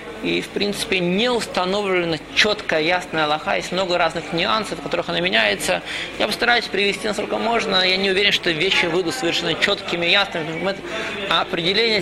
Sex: male